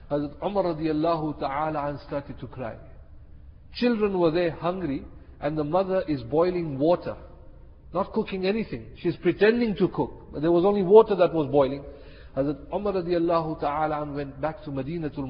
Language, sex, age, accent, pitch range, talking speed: English, male, 50-69, Indian, 140-180 Hz, 170 wpm